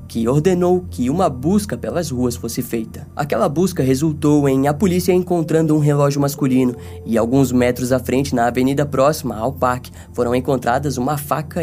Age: 10-29